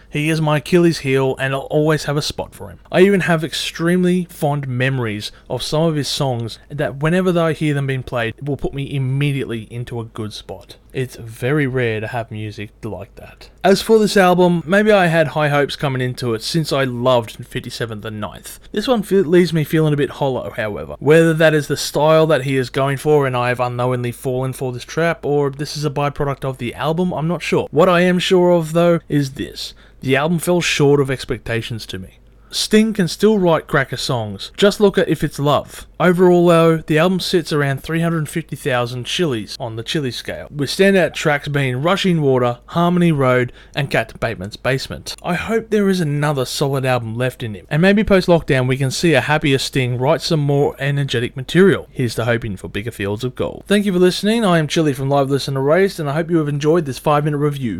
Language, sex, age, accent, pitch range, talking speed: English, male, 20-39, Australian, 125-170 Hz, 220 wpm